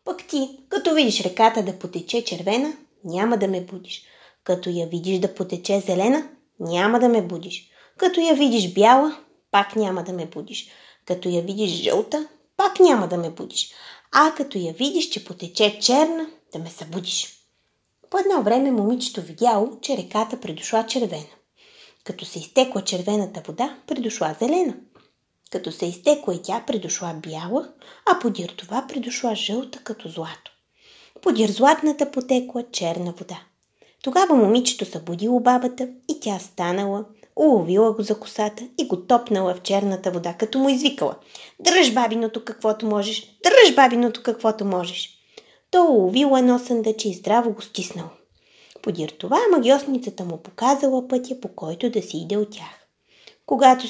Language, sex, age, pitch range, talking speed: Bulgarian, female, 20-39, 185-270 Hz, 150 wpm